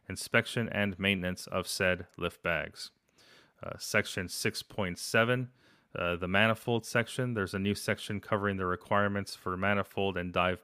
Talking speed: 140 wpm